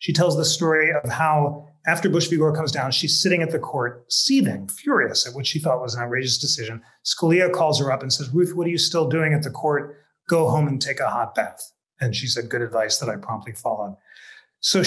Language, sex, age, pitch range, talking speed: English, male, 30-49, 125-160 Hz, 240 wpm